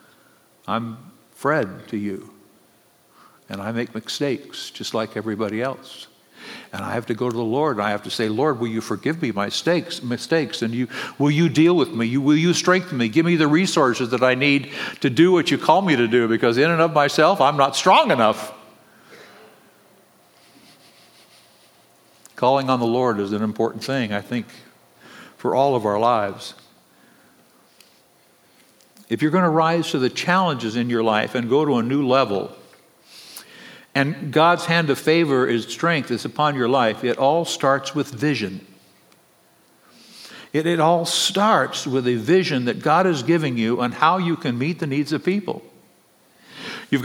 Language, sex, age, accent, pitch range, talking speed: English, male, 60-79, American, 115-160 Hz, 175 wpm